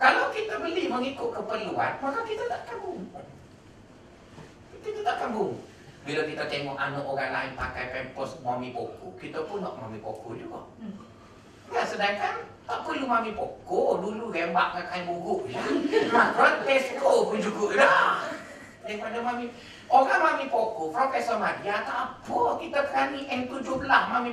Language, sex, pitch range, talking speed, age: Malay, male, 195-315 Hz, 155 wpm, 40-59